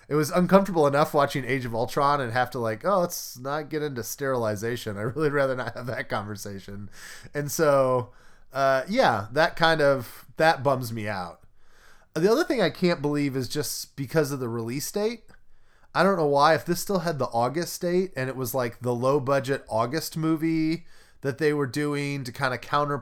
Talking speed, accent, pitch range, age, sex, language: 200 wpm, American, 115-150 Hz, 20-39, male, English